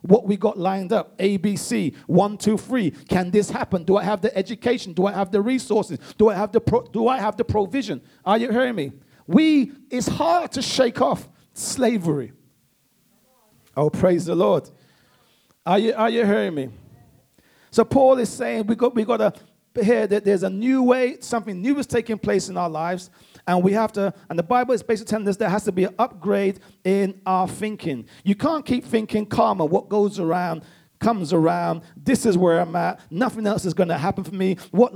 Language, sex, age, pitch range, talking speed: English, male, 40-59, 185-225 Hz, 210 wpm